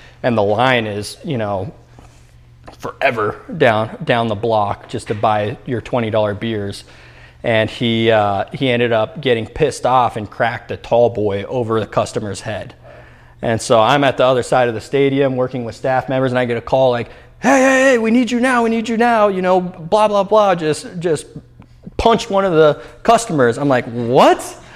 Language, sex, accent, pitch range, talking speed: English, male, American, 110-130 Hz, 200 wpm